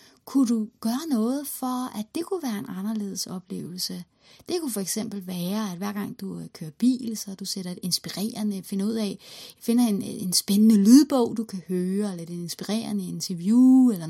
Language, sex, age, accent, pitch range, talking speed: Danish, female, 30-49, native, 205-255 Hz, 185 wpm